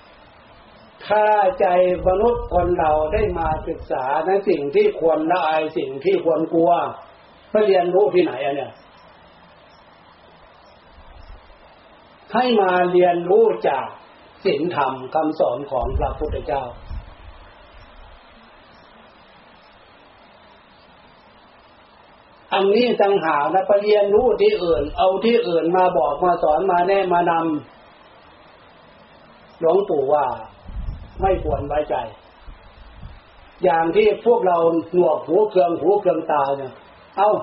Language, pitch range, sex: Thai, 170-245 Hz, male